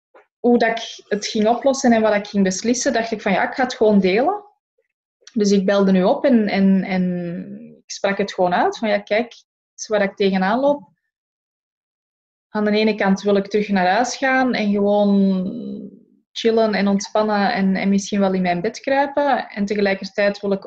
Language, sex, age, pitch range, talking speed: Dutch, female, 20-39, 195-235 Hz, 190 wpm